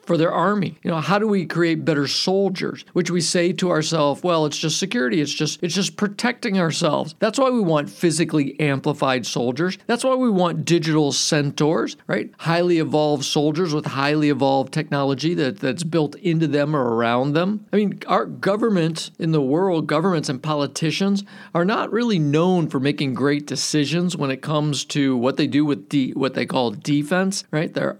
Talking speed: 190 wpm